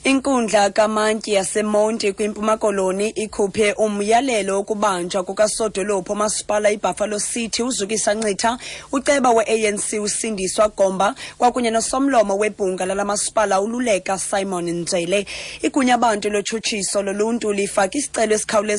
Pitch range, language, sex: 195-220 Hz, English, female